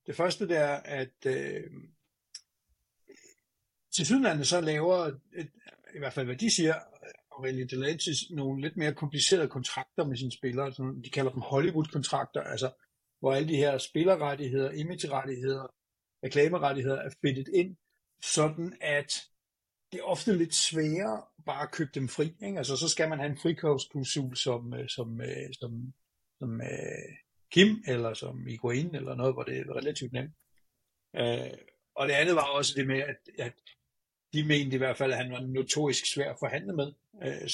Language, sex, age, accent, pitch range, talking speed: Danish, male, 60-79, native, 125-150 Hz, 160 wpm